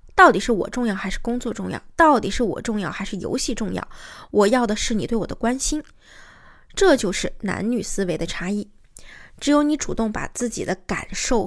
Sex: female